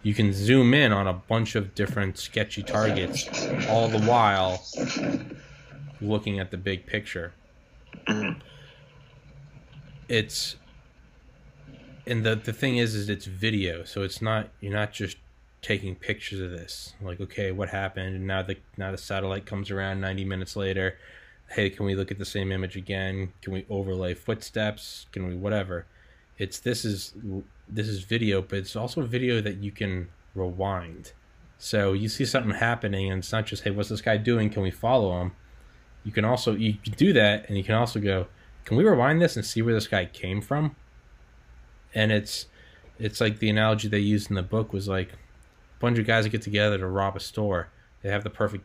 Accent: American